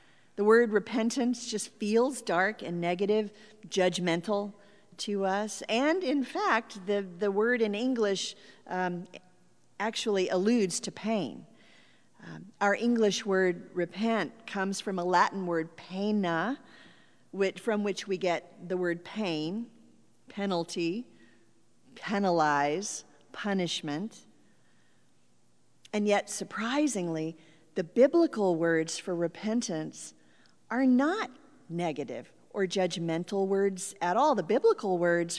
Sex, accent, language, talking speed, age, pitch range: female, American, English, 110 wpm, 50-69, 180-230 Hz